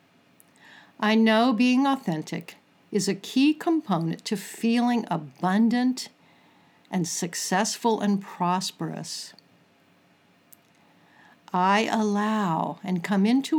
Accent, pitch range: American, 180-230 Hz